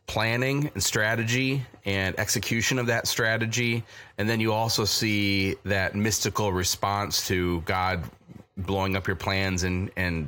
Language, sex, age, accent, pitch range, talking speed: English, male, 30-49, American, 90-110 Hz, 140 wpm